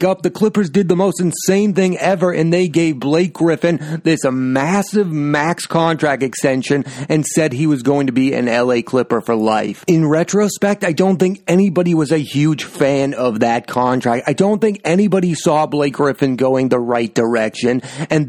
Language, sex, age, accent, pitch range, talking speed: English, male, 30-49, American, 140-180 Hz, 185 wpm